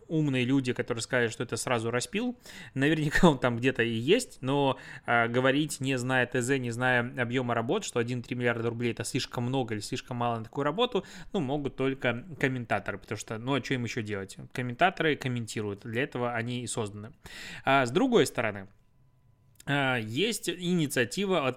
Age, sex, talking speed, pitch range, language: 20-39, male, 175 wpm, 120-145 Hz, Russian